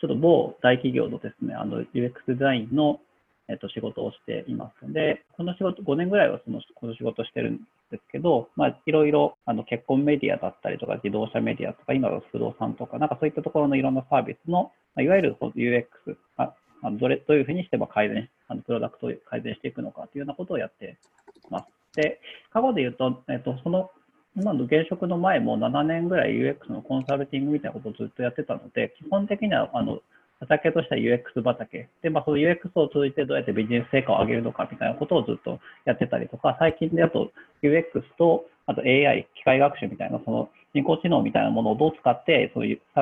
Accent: native